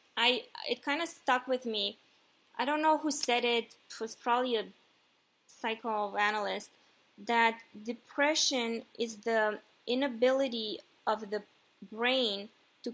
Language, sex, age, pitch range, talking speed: English, female, 20-39, 210-255 Hz, 125 wpm